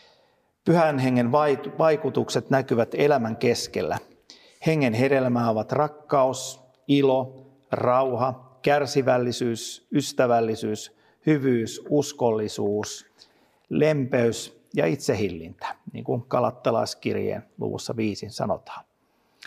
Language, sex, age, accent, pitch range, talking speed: Finnish, male, 50-69, native, 120-145 Hz, 75 wpm